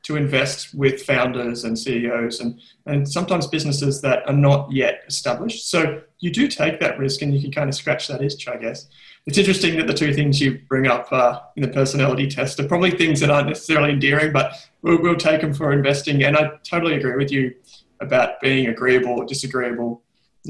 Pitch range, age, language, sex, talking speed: 130-160 Hz, 20-39, English, male, 210 wpm